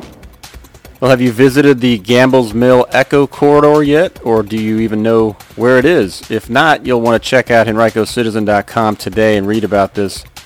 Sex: male